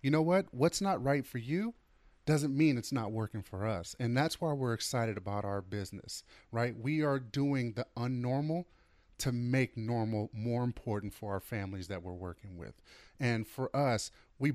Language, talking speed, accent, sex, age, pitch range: English, 185 wpm, American, male, 30-49, 105-140 Hz